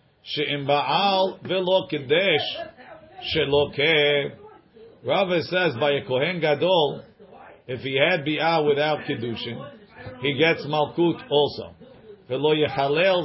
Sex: male